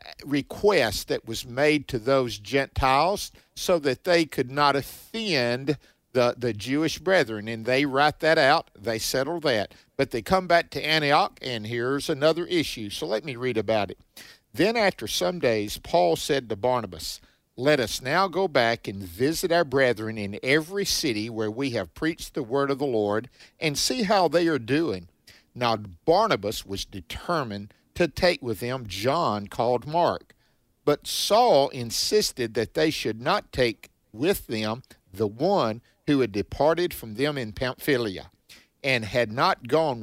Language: English